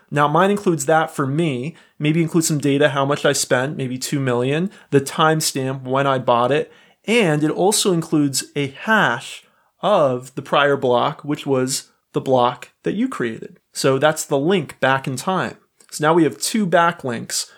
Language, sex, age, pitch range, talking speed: English, male, 30-49, 135-170 Hz, 180 wpm